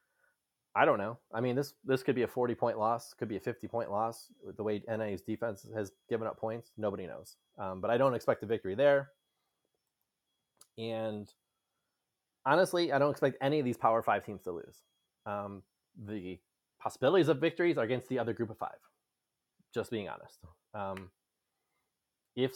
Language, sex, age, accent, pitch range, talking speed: English, male, 20-39, American, 110-150 Hz, 175 wpm